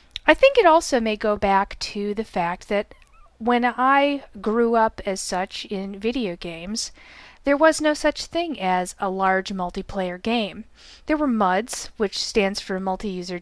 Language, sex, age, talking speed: English, female, 40-59, 165 wpm